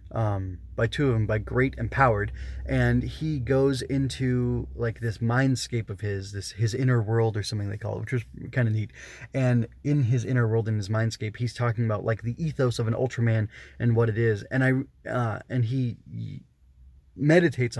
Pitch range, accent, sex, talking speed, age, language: 110-130 Hz, American, male, 195 wpm, 20-39, English